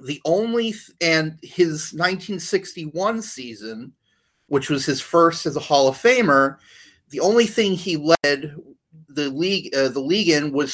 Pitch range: 135-180 Hz